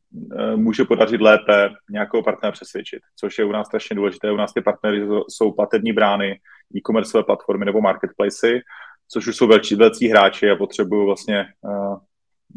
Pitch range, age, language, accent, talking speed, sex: 100-120 Hz, 30-49, Czech, native, 160 wpm, male